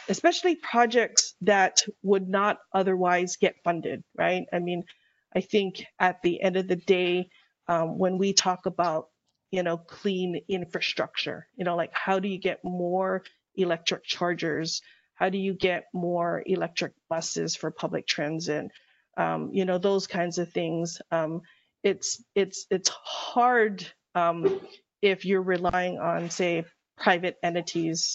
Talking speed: 145 wpm